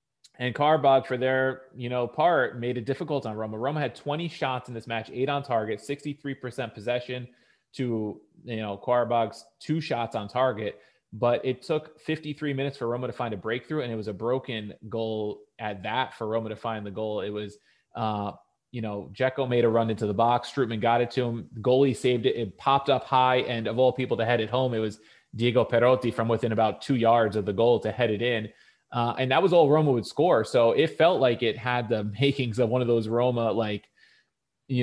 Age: 20-39